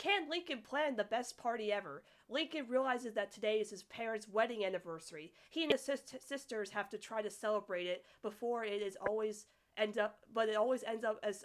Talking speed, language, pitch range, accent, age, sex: 200 wpm, English, 195-250 Hz, American, 30-49, female